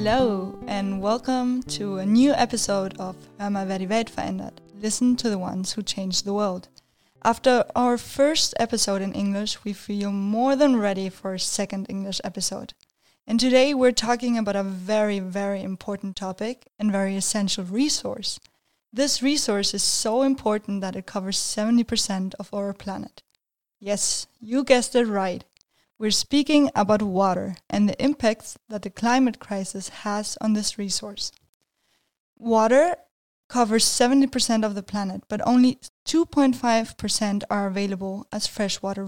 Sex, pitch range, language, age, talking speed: female, 200-250 Hz, German, 20-39, 145 wpm